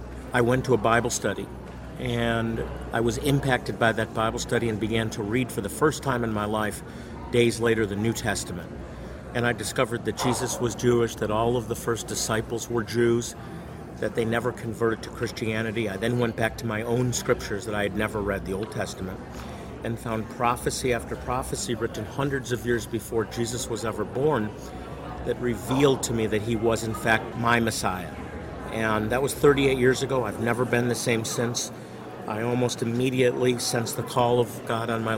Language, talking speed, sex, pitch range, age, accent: English, 195 wpm, male, 110-125 Hz, 50-69, American